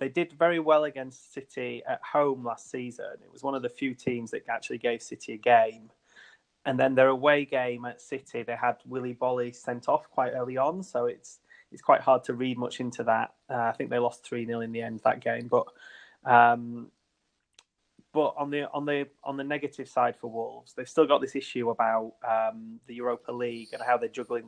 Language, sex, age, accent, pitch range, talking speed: English, male, 20-39, British, 115-135 Hz, 215 wpm